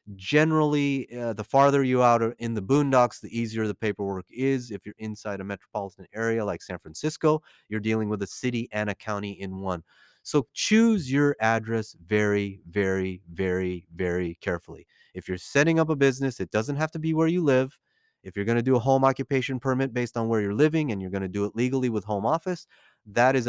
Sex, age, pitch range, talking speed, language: male, 30-49, 95-125 Hz, 205 wpm, English